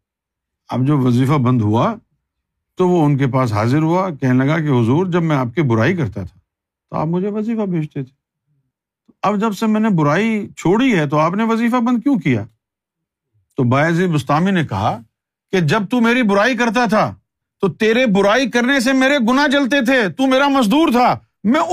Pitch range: 140-230 Hz